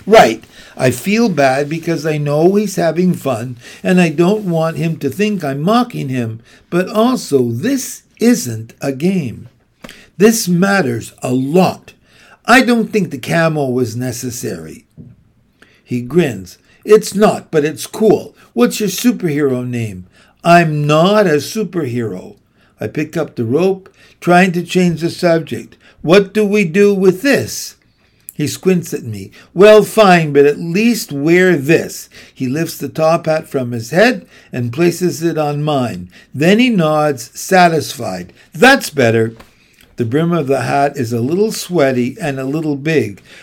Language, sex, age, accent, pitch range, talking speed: English, male, 60-79, American, 130-195 Hz, 155 wpm